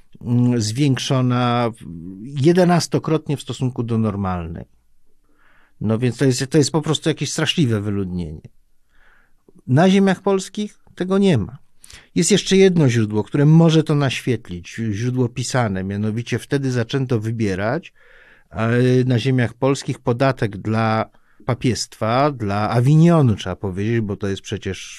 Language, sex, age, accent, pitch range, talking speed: Polish, male, 50-69, native, 110-145 Hz, 120 wpm